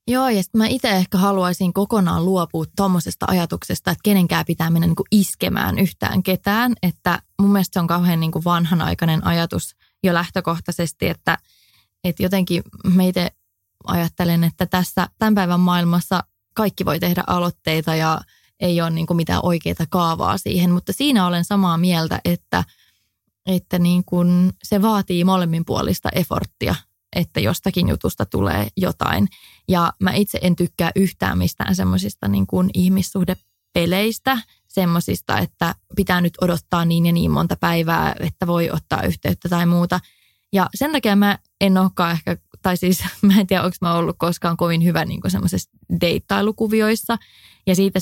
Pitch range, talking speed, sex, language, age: 165-190 Hz, 145 wpm, female, English, 20-39